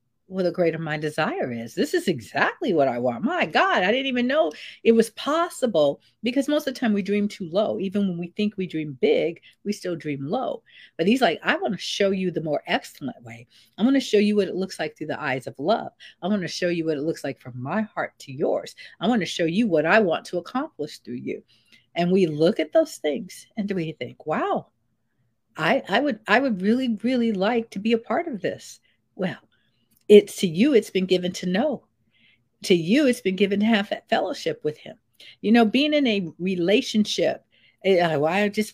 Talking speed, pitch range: 225 wpm, 165-230 Hz